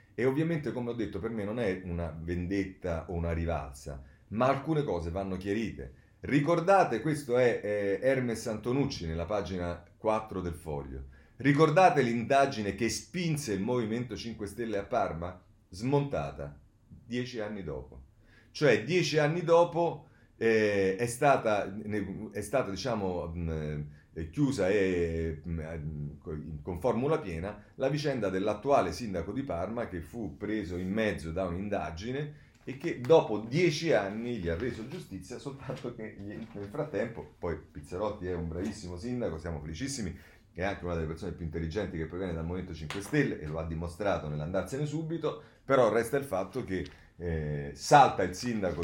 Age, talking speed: 30-49, 150 wpm